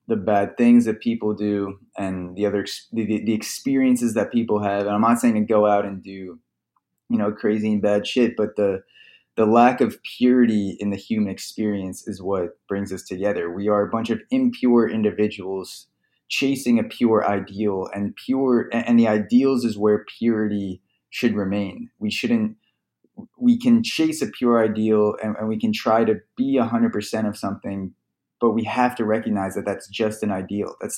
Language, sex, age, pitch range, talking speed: English, male, 20-39, 100-120 Hz, 190 wpm